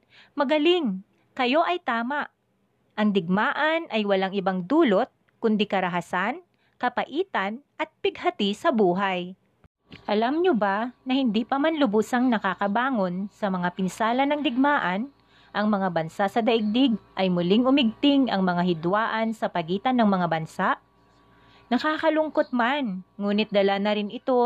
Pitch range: 195-275 Hz